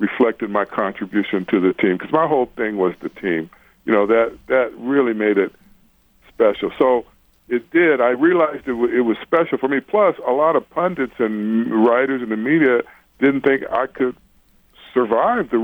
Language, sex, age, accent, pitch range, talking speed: English, female, 60-79, American, 90-125 Hz, 190 wpm